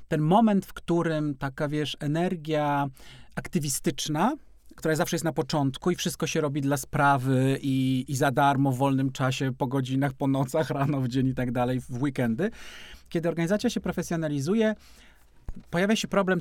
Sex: male